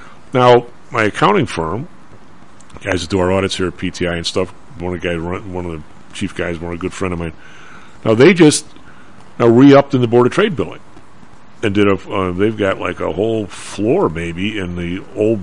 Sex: male